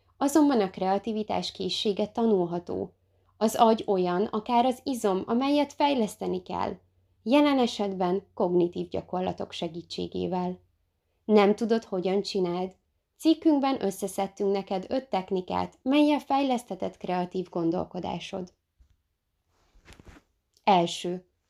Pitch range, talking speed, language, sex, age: 180-235 Hz, 90 wpm, Hungarian, female, 20-39